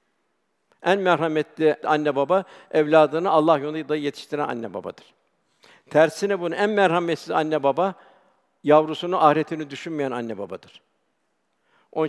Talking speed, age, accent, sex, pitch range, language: 110 wpm, 60-79, native, male, 145-165 Hz, Turkish